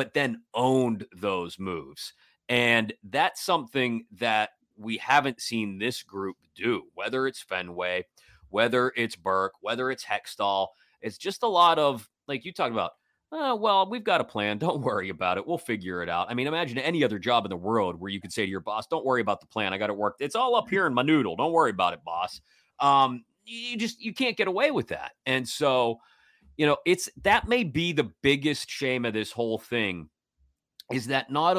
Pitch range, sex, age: 100-135 Hz, male, 30-49